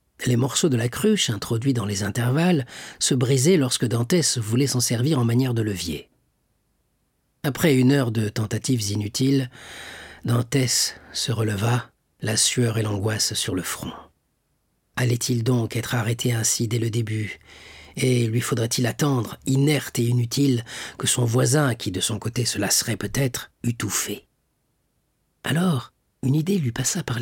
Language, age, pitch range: French, 40-59, 115-140 Hz